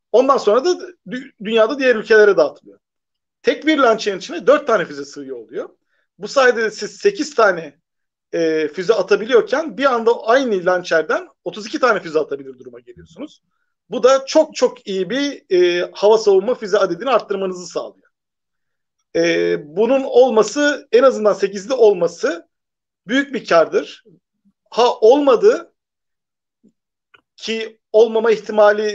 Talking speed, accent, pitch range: 125 wpm, native, 195-285 Hz